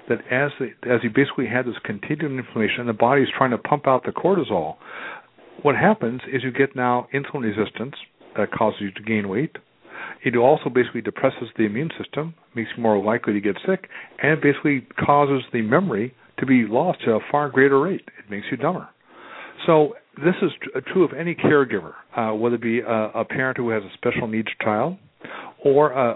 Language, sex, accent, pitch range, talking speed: English, male, American, 115-145 Hz, 195 wpm